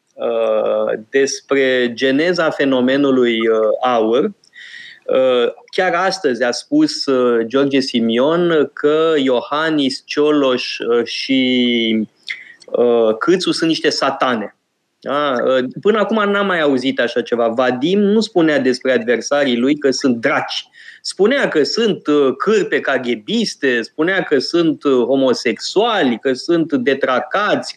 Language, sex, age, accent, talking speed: Romanian, male, 20-39, native, 100 wpm